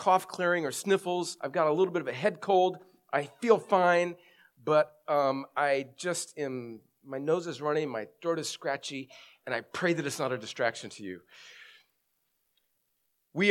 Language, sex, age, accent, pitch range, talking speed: English, male, 40-59, American, 145-180 Hz, 180 wpm